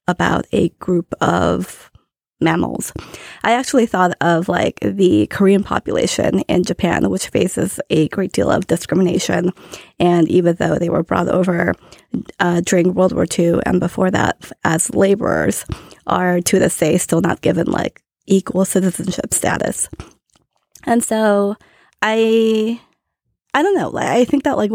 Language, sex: English, female